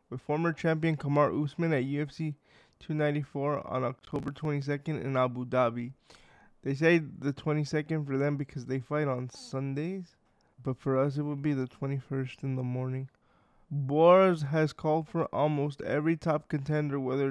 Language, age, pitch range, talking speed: English, 20-39, 135-155 Hz, 155 wpm